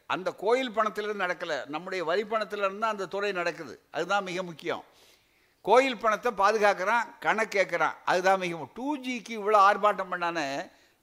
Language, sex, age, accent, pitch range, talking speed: Tamil, male, 60-79, native, 170-220 Hz, 125 wpm